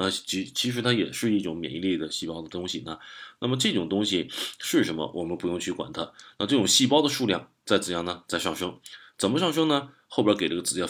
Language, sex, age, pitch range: Chinese, male, 20-39, 95-135 Hz